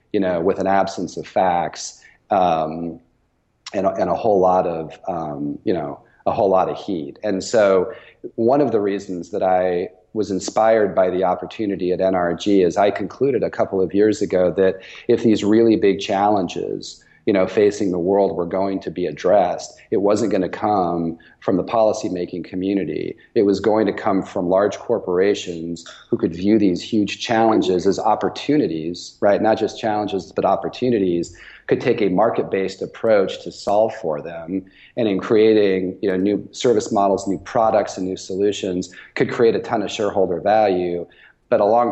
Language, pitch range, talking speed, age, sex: English, 85-100 Hz, 175 wpm, 40-59, male